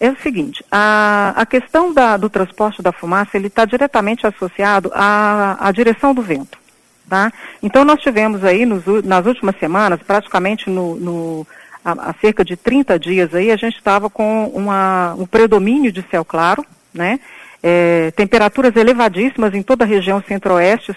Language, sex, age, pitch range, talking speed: Portuguese, female, 40-59, 195-255 Hz, 165 wpm